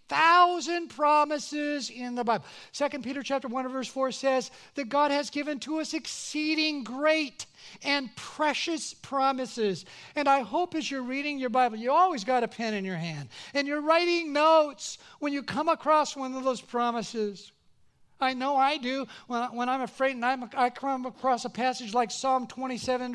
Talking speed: 175 wpm